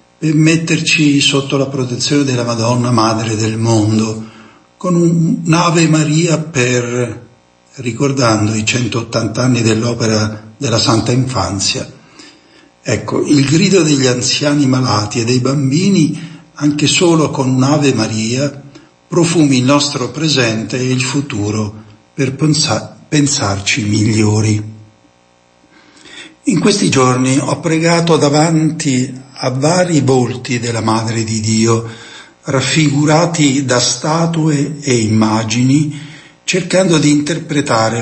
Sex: male